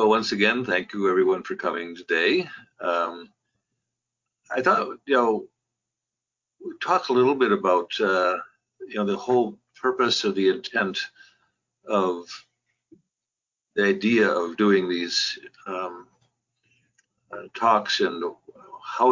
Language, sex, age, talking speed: English, male, 60-79, 125 wpm